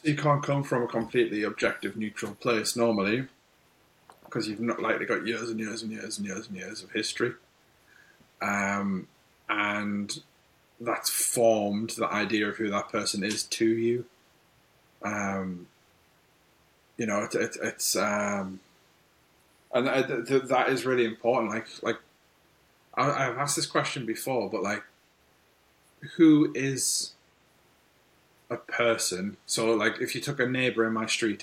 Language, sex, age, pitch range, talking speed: English, male, 20-39, 100-115 Hz, 155 wpm